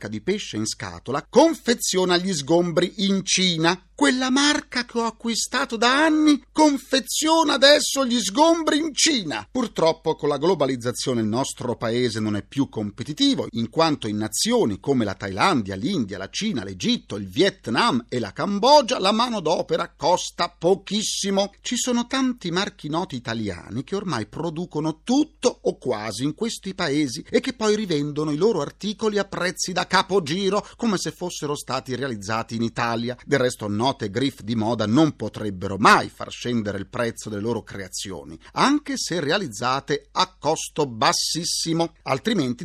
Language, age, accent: Italian, 40-59, native